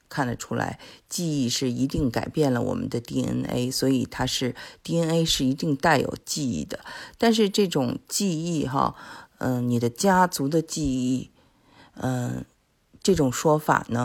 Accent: native